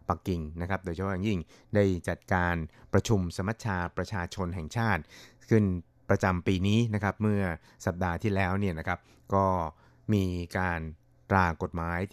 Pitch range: 90-105 Hz